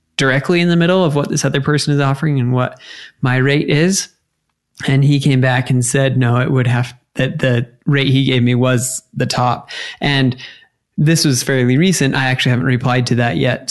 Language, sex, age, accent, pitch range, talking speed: English, male, 20-39, American, 125-150 Hz, 205 wpm